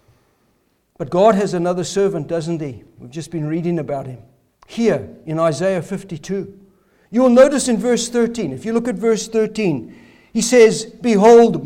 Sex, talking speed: male, 165 wpm